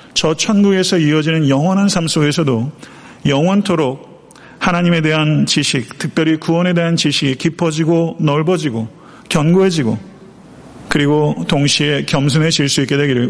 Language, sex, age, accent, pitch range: Korean, male, 40-59, native, 135-170 Hz